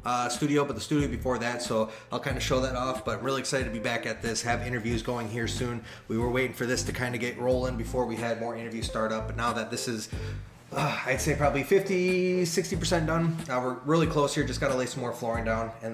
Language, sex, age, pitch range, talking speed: English, male, 20-39, 115-140 Hz, 265 wpm